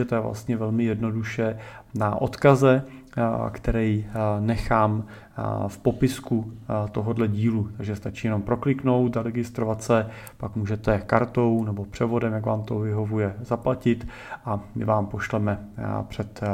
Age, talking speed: 30-49, 130 wpm